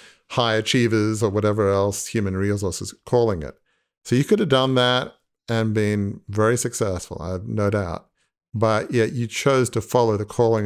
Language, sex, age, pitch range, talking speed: English, male, 50-69, 105-125 Hz, 175 wpm